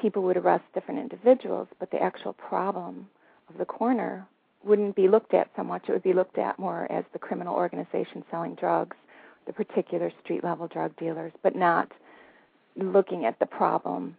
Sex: female